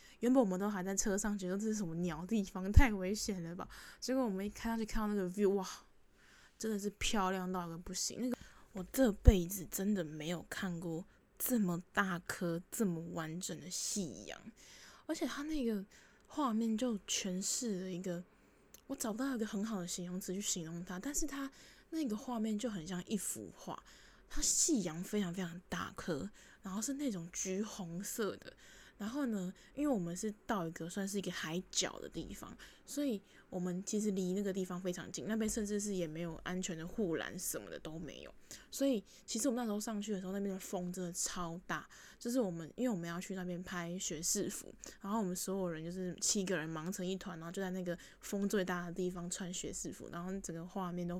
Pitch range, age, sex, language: 180-225 Hz, 10-29, female, Chinese